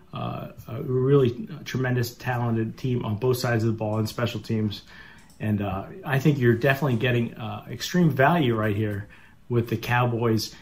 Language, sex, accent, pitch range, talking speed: English, male, American, 110-135 Hz, 170 wpm